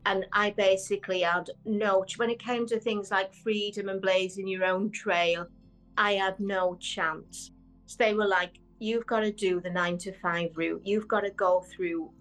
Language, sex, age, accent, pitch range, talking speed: English, female, 40-59, British, 180-225 Hz, 190 wpm